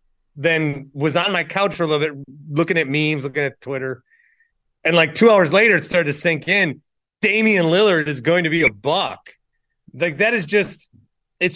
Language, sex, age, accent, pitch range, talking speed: English, male, 30-49, American, 150-195 Hz, 195 wpm